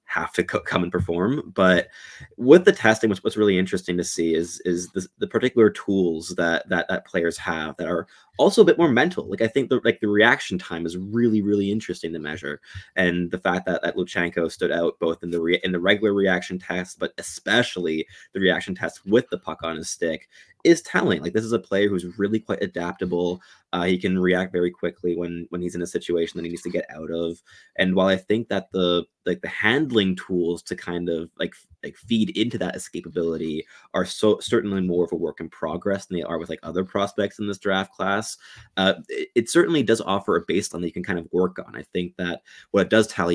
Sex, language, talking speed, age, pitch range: male, English, 230 wpm, 20-39, 85-100 Hz